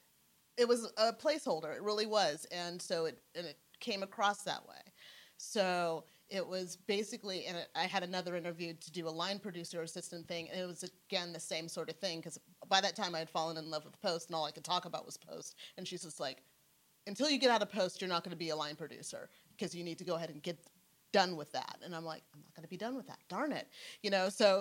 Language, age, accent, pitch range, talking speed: English, 30-49, American, 160-195 Hz, 260 wpm